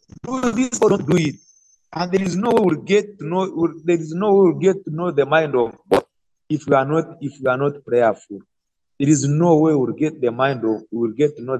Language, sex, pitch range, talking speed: English, male, 135-190 Hz, 240 wpm